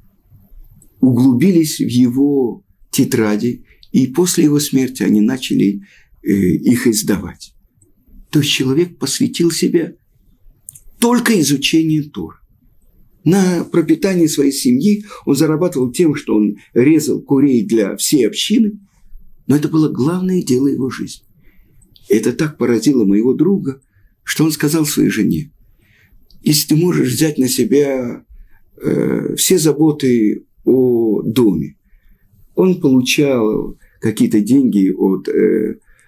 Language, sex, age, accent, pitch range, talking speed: Russian, male, 50-69, native, 105-155 Hz, 115 wpm